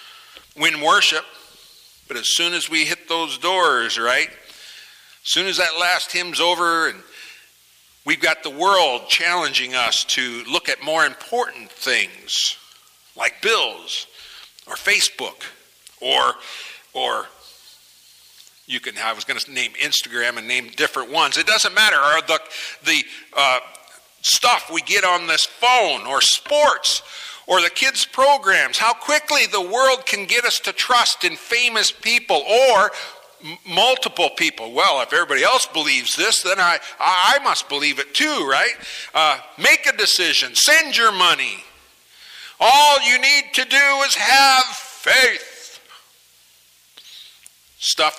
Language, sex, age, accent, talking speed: English, male, 50-69, American, 140 wpm